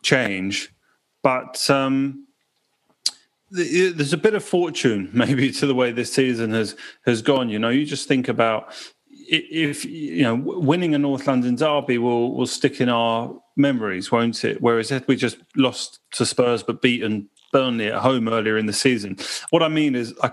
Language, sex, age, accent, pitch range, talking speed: English, male, 30-49, British, 115-140 Hz, 180 wpm